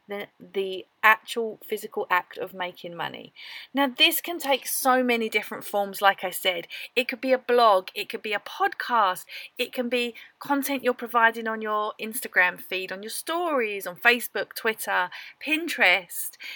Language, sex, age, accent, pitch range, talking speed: English, female, 40-59, British, 205-265 Hz, 165 wpm